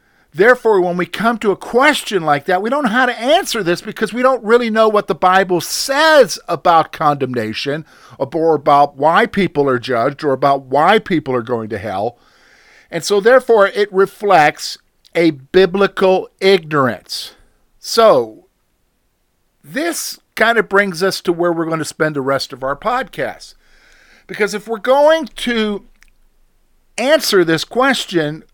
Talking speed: 155 wpm